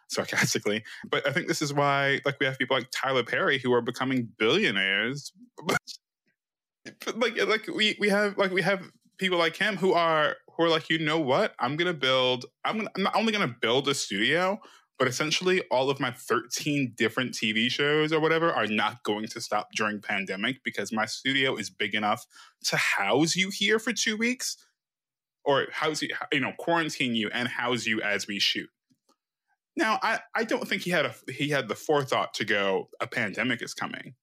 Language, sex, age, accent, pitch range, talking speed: English, male, 20-39, American, 115-165 Hz, 200 wpm